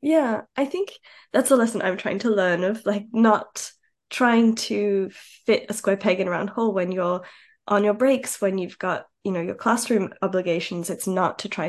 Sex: female